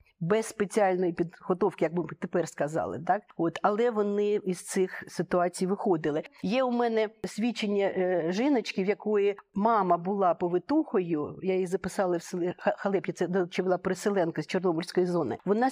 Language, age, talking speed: Ukrainian, 50-69, 150 wpm